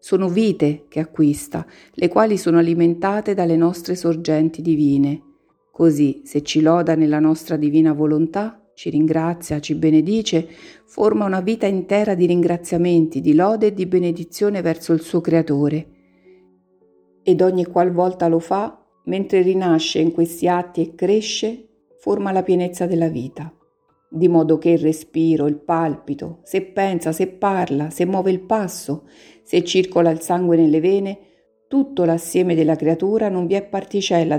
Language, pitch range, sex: Italian, 160-185 Hz, female